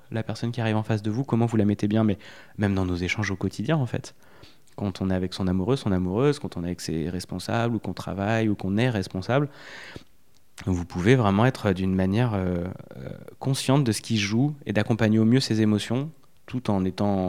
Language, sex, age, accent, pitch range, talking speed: French, male, 20-39, French, 95-120 Hz, 225 wpm